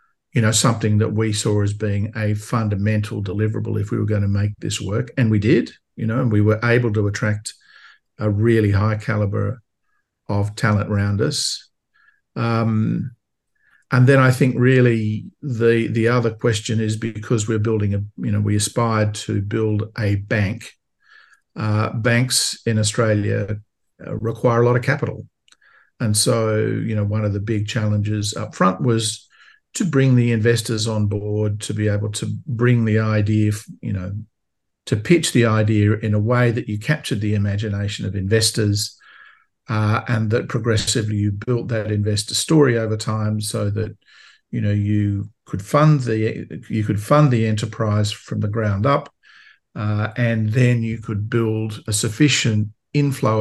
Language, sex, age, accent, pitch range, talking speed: English, male, 50-69, Australian, 105-120 Hz, 165 wpm